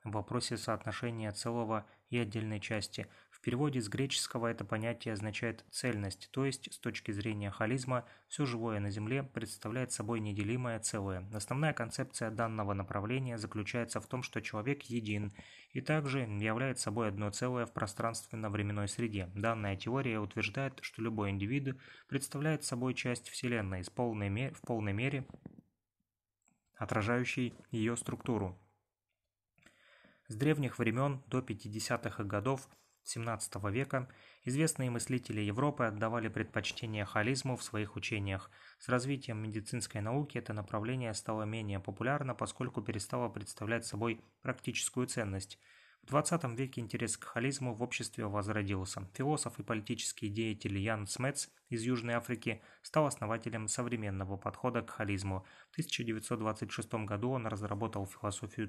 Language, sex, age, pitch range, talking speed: Russian, male, 20-39, 105-125 Hz, 130 wpm